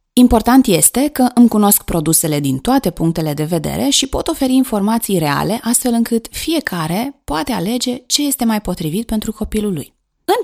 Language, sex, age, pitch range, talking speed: Romanian, female, 20-39, 160-245 Hz, 165 wpm